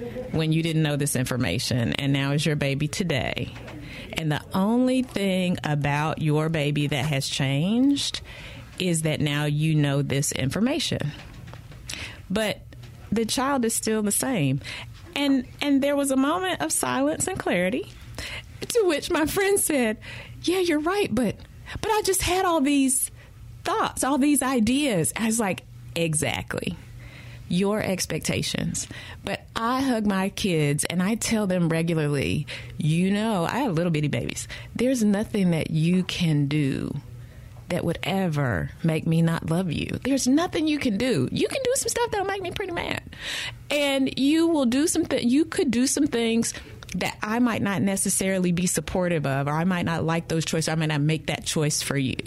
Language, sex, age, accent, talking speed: English, female, 30-49, American, 175 wpm